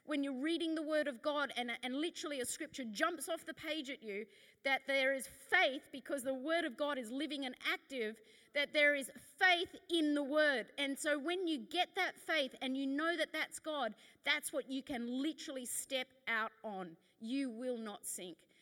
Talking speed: 205 wpm